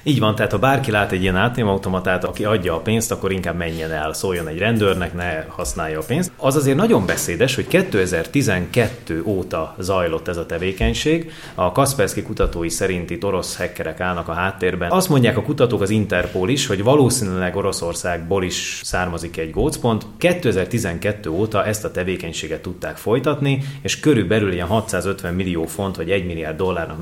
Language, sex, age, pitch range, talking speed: Hungarian, male, 30-49, 90-125 Hz, 170 wpm